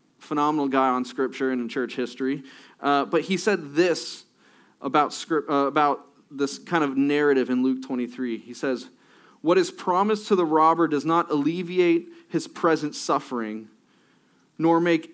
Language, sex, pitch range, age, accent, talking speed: English, male, 140-170 Hz, 30-49, American, 155 wpm